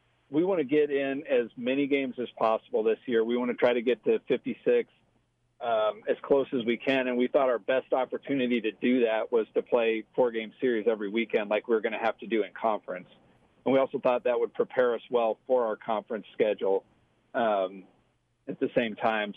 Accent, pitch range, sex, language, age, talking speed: American, 115-145 Hz, male, English, 40-59, 215 wpm